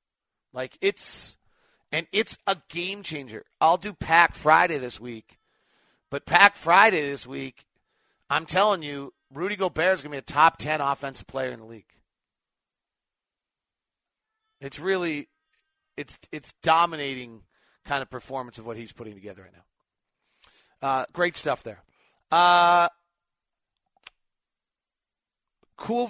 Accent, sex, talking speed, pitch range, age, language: American, male, 125 wpm, 115-165 Hz, 40-59, English